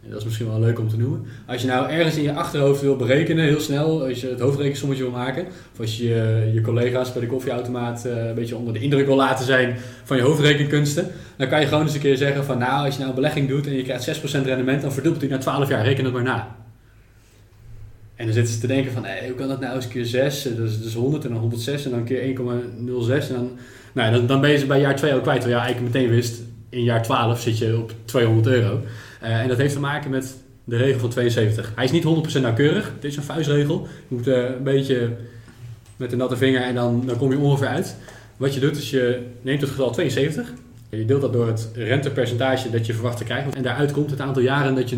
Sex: male